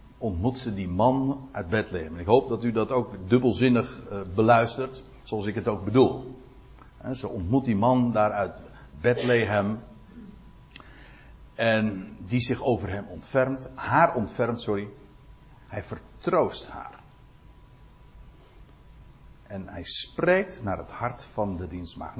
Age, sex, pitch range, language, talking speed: 60-79, male, 105-145 Hz, Dutch, 125 wpm